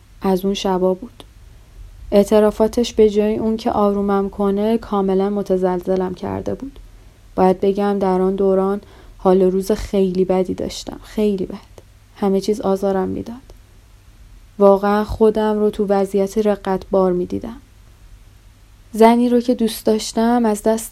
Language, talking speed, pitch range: Persian, 130 wpm, 175-205 Hz